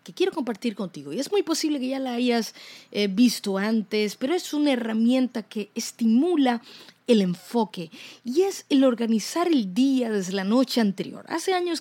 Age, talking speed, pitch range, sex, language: 30-49, 180 wpm, 210-275 Hz, female, Spanish